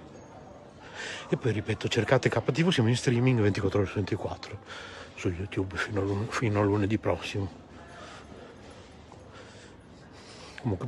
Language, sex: Italian, male